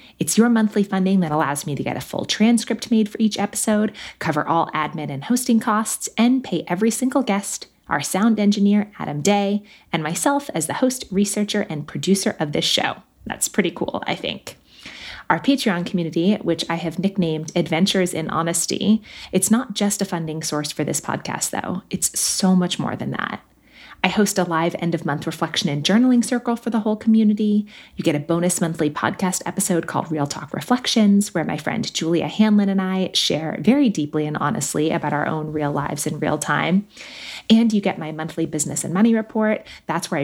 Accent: American